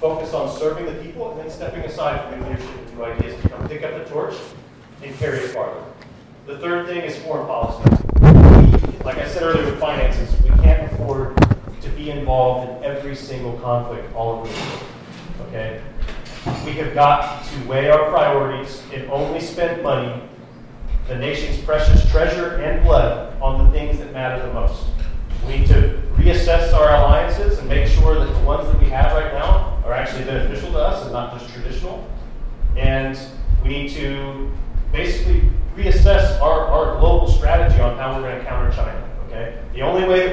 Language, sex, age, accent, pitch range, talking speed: English, male, 40-59, American, 120-150 Hz, 180 wpm